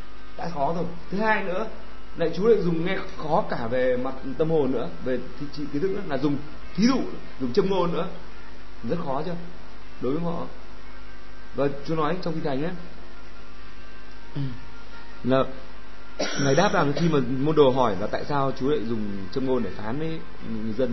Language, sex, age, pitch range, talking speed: Vietnamese, male, 20-39, 130-170 Hz, 185 wpm